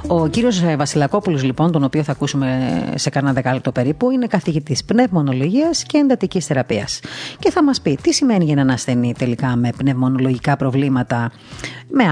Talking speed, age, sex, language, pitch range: 160 wpm, 30-49, female, Greek, 130-175 Hz